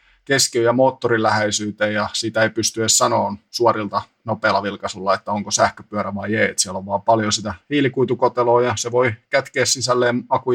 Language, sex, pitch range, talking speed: Finnish, male, 110-130 Hz, 165 wpm